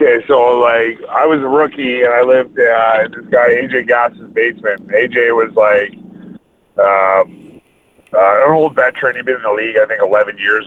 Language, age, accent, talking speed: English, 40-59, American, 190 wpm